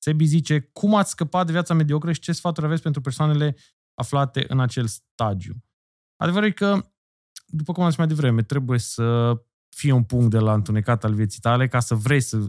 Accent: native